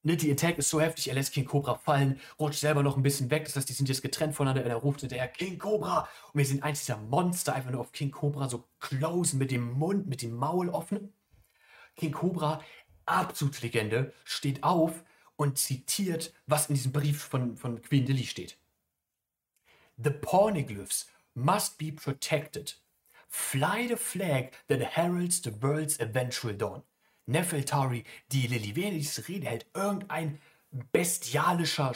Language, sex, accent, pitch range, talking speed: German, male, German, 125-160 Hz, 160 wpm